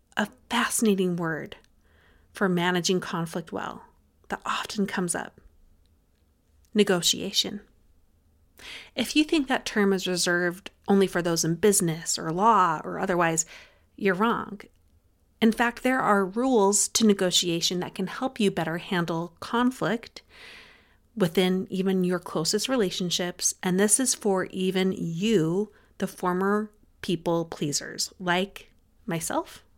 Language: English